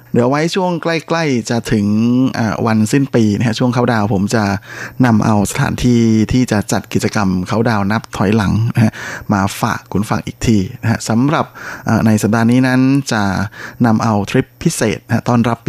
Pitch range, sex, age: 105-125 Hz, male, 20-39